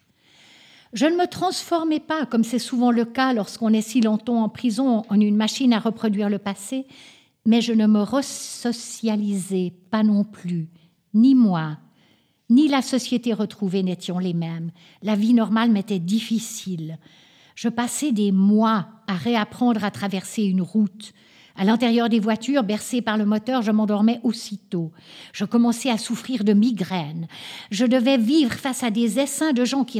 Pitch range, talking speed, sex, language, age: 210-255 Hz, 165 wpm, female, French, 50-69